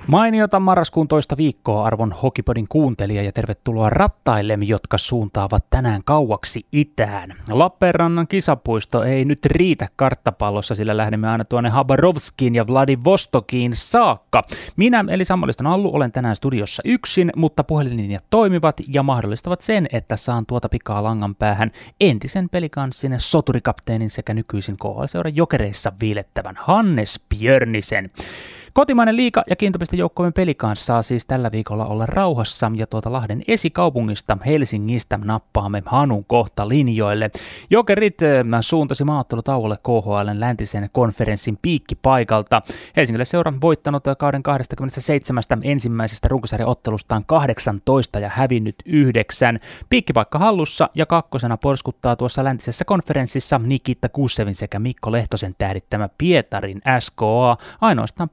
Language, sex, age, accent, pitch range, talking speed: Finnish, male, 20-39, native, 110-150 Hz, 120 wpm